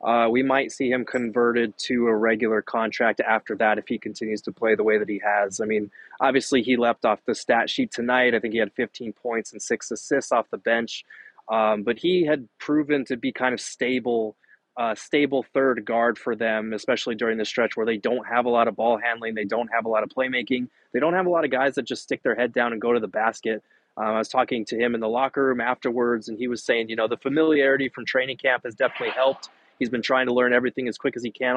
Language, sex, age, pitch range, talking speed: English, male, 20-39, 110-130 Hz, 255 wpm